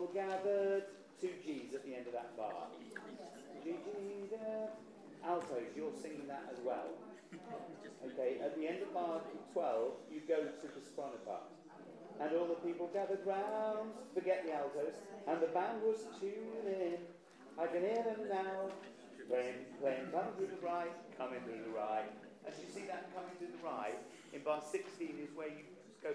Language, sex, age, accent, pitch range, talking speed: English, male, 40-59, British, 145-205 Hz, 165 wpm